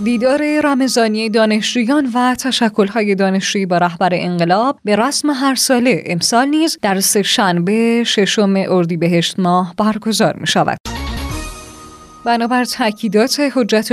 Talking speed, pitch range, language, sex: 120 wpm, 185-240 Hz, Persian, female